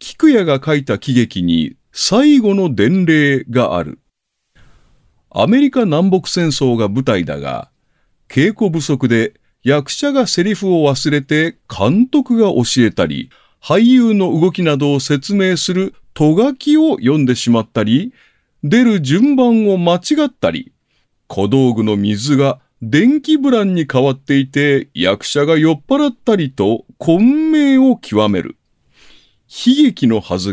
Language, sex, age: Japanese, male, 40-59